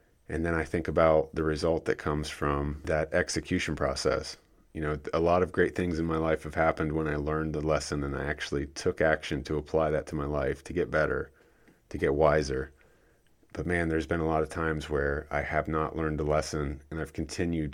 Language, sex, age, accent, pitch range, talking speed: English, male, 30-49, American, 75-85 Hz, 220 wpm